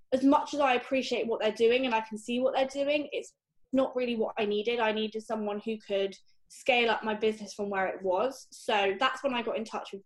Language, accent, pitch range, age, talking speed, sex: English, British, 200-255 Hz, 20-39, 250 wpm, female